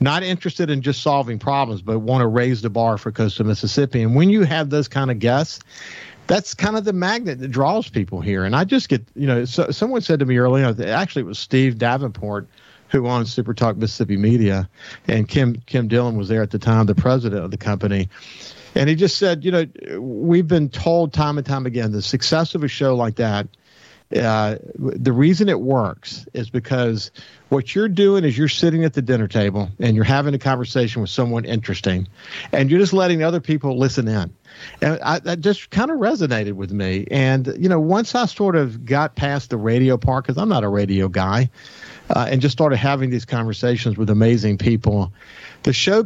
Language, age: English, 50-69